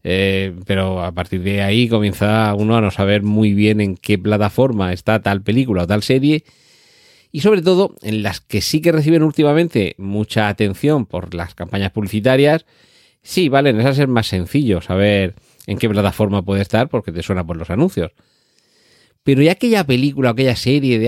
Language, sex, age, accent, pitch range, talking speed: Spanish, male, 40-59, Spanish, 100-130 Hz, 185 wpm